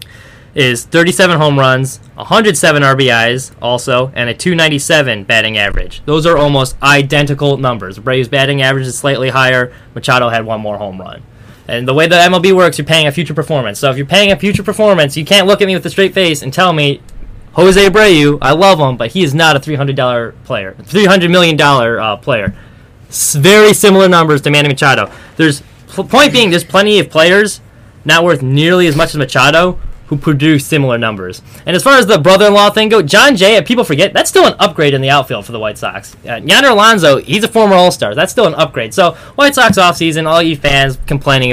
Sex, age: male, 20-39